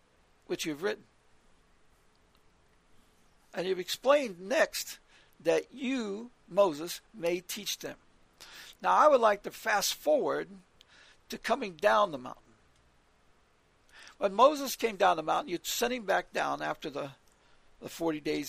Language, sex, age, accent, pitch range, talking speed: English, male, 60-79, American, 180-230 Hz, 135 wpm